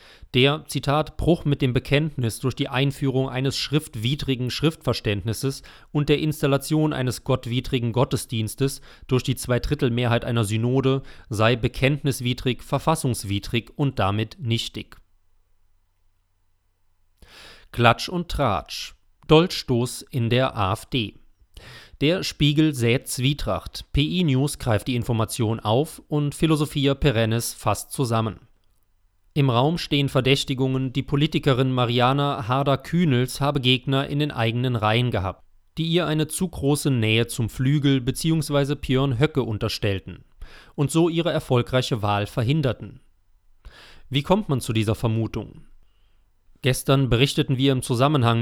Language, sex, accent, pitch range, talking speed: German, male, German, 115-145 Hz, 120 wpm